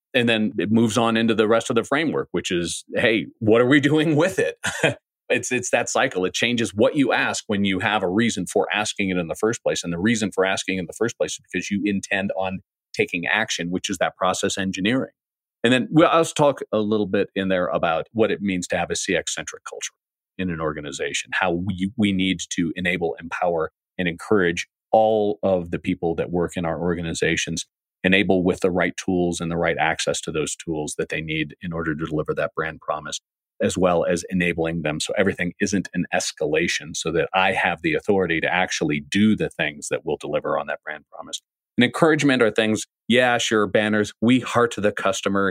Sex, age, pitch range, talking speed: male, 40-59, 90-115 Hz, 215 wpm